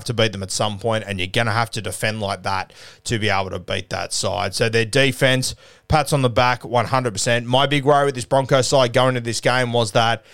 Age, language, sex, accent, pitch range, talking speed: 20-39, English, male, Australian, 110-130 Hz, 250 wpm